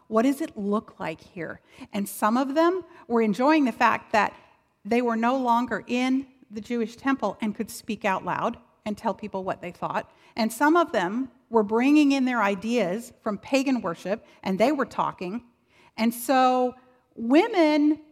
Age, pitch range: 50-69, 215-285 Hz